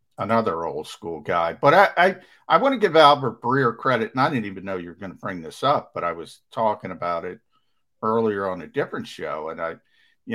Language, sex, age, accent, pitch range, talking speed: English, male, 50-69, American, 100-135 Hz, 230 wpm